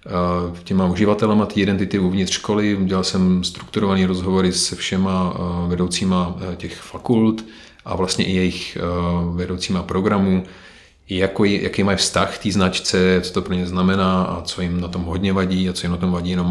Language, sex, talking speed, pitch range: Czech, male, 165 wpm, 90-95 Hz